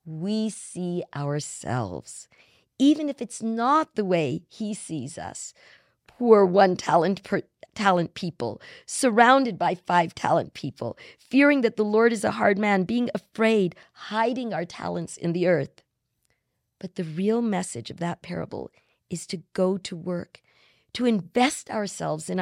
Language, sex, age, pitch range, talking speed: English, female, 50-69, 175-230 Hz, 140 wpm